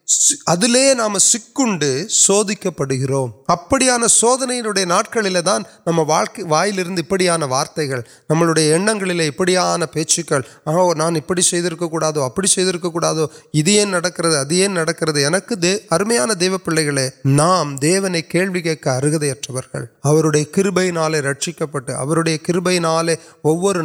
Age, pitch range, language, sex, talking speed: 30-49, 145-185 Hz, Urdu, male, 45 wpm